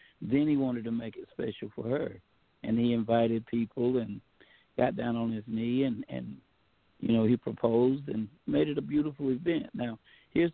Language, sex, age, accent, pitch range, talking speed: English, male, 60-79, American, 115-135 Hz, 190 wpm